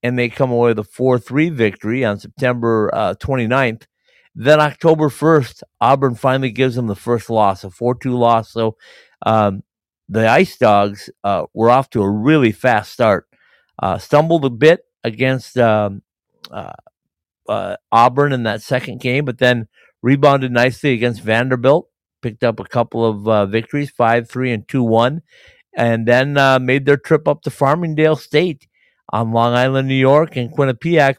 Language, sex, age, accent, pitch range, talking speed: English, male, 50-69, American, 110-135 Hz, 160 wpm